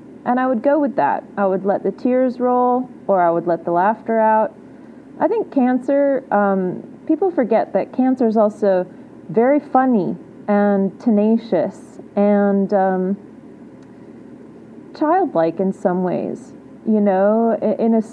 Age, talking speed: 30-49, 140 wpm